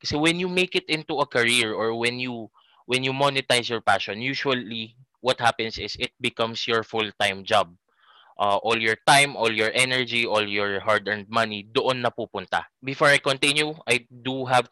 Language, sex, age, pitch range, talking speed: Filipino, male, 20-39, 105-120 Hz, 185 wpm